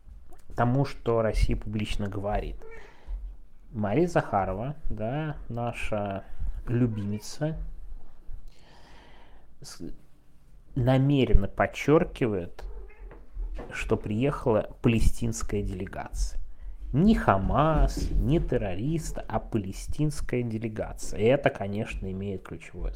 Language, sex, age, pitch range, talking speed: Russian, male, 30-49, 95-130 Hz, 75 wpm